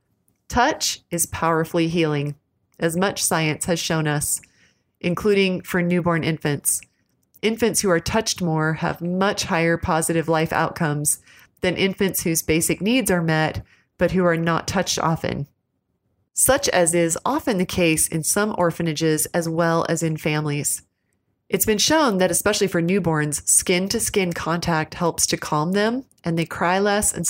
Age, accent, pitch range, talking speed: 30-49, American, 160-195 Hz, 155 wpm